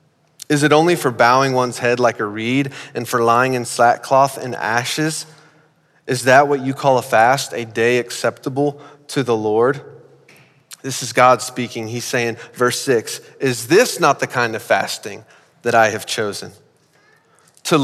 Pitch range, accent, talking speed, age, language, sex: 120-145 Hz, American, 170 wpm, 30-49, English, male